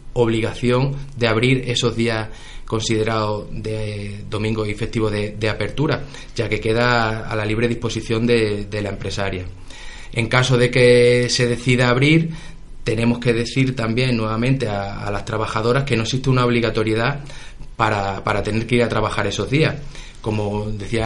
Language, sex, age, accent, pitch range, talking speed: Spanish, male, 30-49, Spanish, 110-125 Hz, 160 wpm